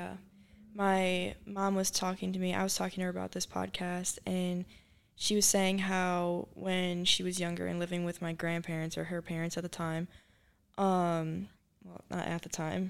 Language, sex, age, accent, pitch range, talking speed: English, female, 10-29, American, 160-185 Hz, 185 wpm